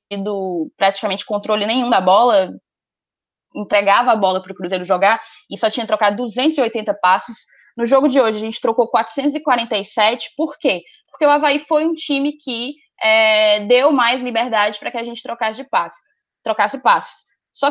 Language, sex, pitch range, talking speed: Portuguese, female, 205-280 Hz, 160 wpm